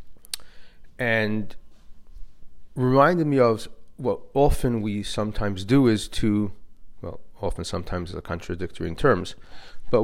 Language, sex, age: English, male, 40-59